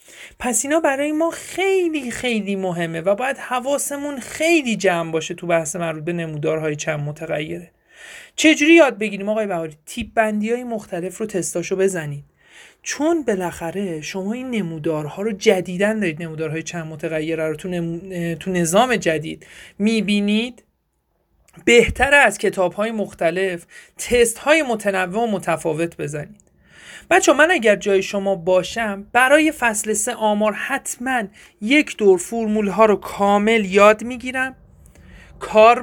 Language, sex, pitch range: Persian, male, 180-265 Hz